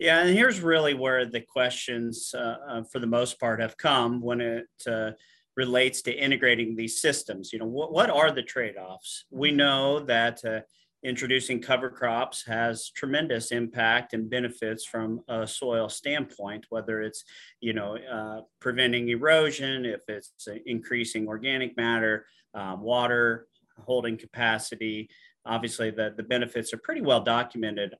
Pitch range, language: 110-130 Hz, English